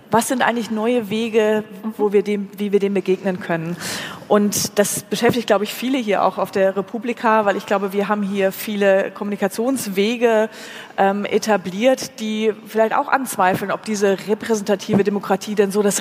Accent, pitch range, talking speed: German, 190-215 Hz, 170 wpm